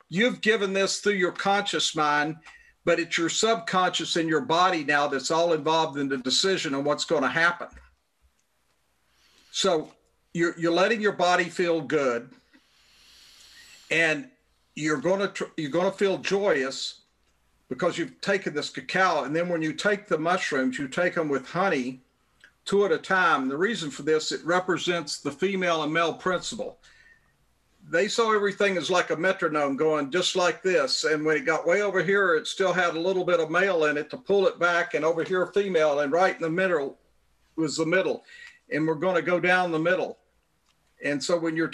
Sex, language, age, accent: male, English, 50-69, American